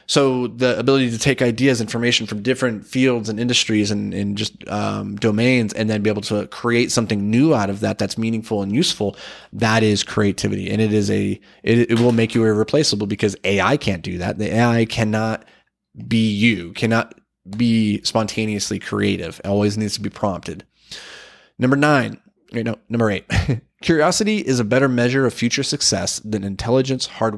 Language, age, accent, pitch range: English, 20-39, American, 105-125 Hz